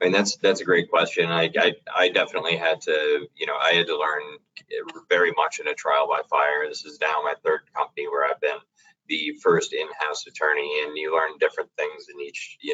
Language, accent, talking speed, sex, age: English, American, 225 wpm, male, 20-39